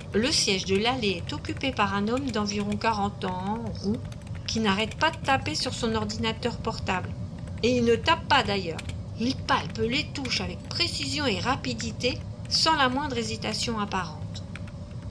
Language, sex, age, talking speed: French, female, 40-59, 165 wpm